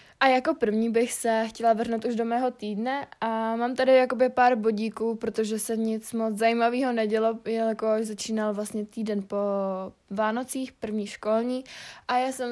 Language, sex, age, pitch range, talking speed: Czech, female, 20-39, 210-230 Hz, 165 wpm